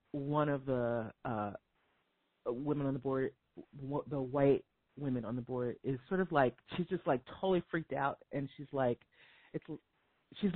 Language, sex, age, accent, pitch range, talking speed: English, female, 30-49, American, 140-205 Hz, 170 wpm